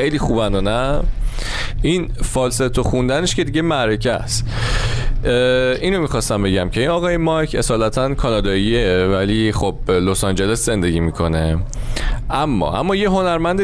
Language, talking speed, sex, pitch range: Persian, 130 wpm, male, 100-145 Hz